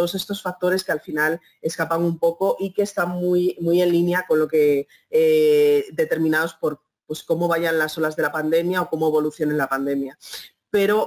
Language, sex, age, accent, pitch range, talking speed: English, female, 30-49, Spanish, 155-185 Hz, 190 wpm